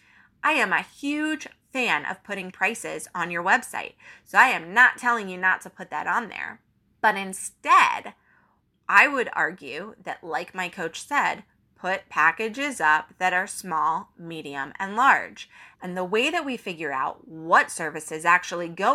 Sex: female